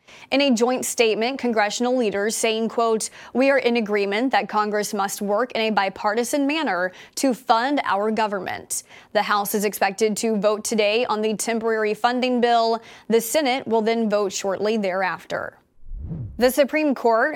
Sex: female